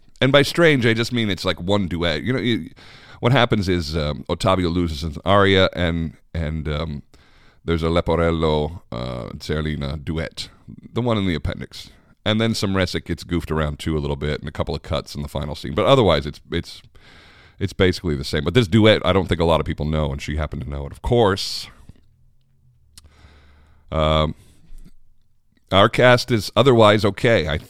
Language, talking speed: English, 195 wpm